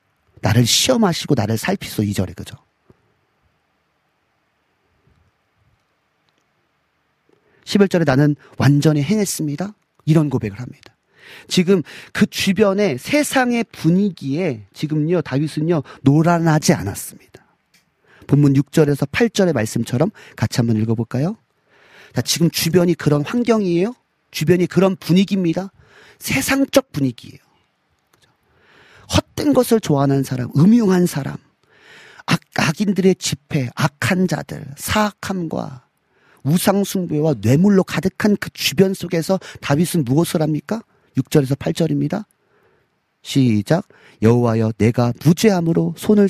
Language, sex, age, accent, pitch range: Korean, male, 40-59, native, 130-190 Hz